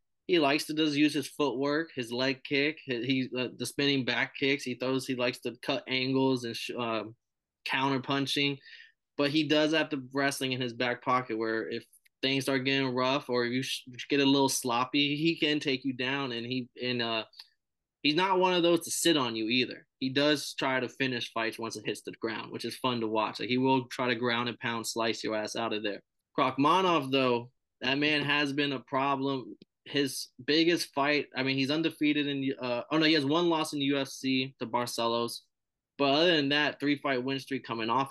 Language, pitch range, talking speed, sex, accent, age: English, 125-145 Hz, 215 wpm, male, American, 20-39